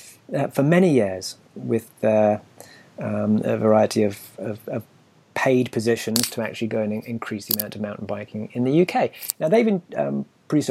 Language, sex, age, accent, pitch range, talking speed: English, male, 30-49, British, 110-155 Hz, 160 wpm